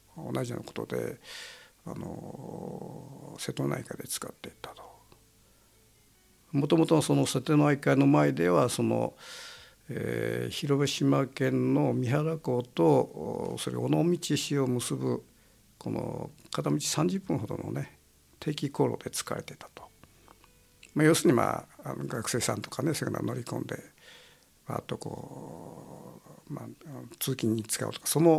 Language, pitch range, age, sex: Japanese, 120-160 Hz, 50-69, male